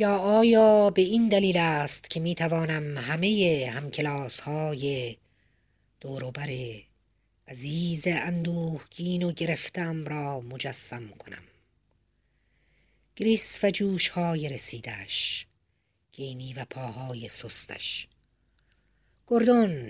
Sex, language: female, Persian